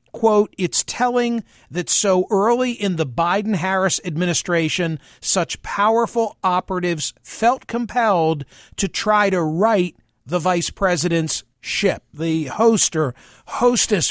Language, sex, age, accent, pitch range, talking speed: English, male, 50-69, American, 165-215 Hz, 115 wpm